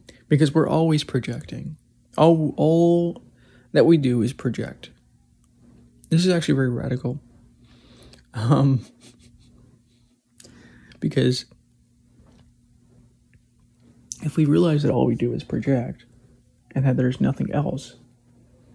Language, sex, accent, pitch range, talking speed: English, male, American, 120-145 Hz, 100 wpm